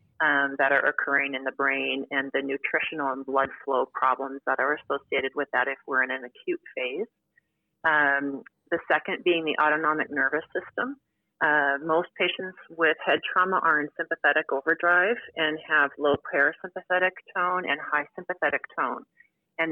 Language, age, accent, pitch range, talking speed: English, 30-49, American, 140-180 Hz, 160 wpm